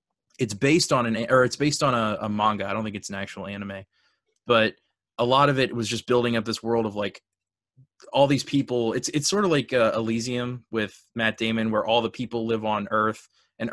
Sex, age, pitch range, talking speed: male, 20-39, 110-125 Hz, 225 wpm